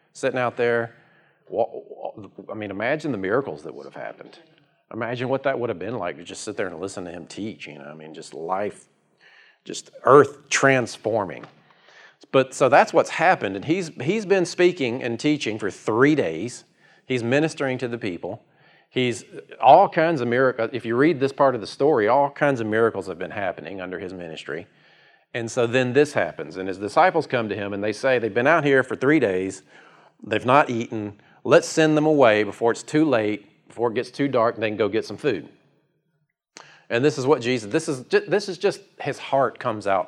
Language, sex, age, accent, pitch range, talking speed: English, male, 40-59, American, 115-150 Hz, 205 wpm